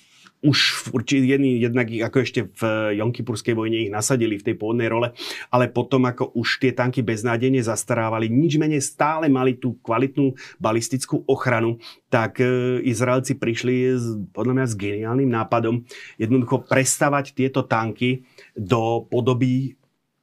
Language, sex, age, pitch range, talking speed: Slovak, male, 30-49, 120-130 Hz, 130 wpm